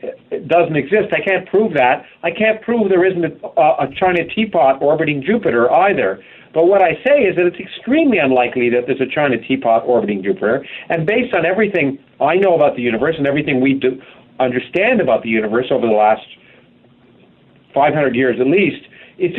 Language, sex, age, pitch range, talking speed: English, male, 50-69, 135-205 Hz, 185 wpm